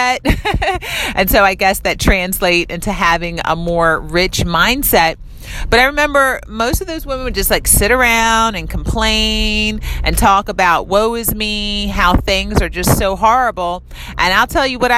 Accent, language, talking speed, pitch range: American, English, 170 wpm, 185-240 Hz